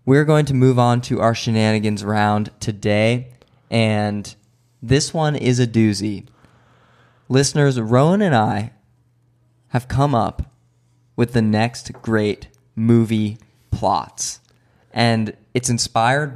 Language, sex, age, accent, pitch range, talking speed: English, male, 20-39, American, 110-130 Hz, 115 wpm